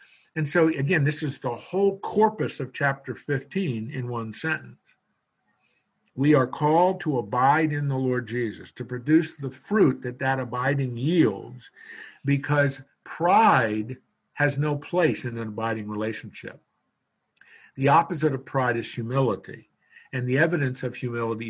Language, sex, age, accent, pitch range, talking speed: English, male, 50-69, American, 115-145 Hz, 140 wpm